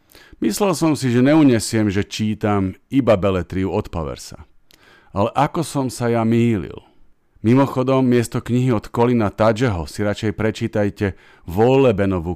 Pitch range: 100-130 Hz